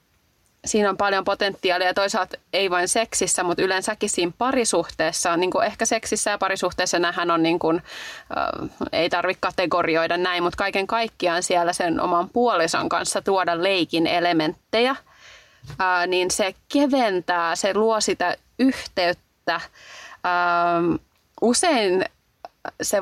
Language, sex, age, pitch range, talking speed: Finnish, female, 30-49, 170-200 Hz, 120 wpm